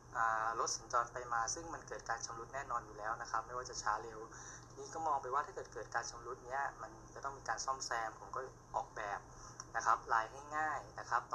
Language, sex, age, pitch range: Thai, male, 20-39, 115-135 Hz